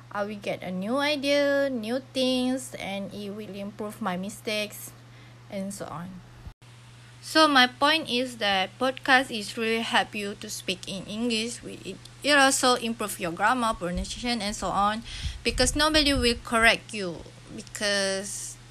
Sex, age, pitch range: female, 20-39, 180-230 Hz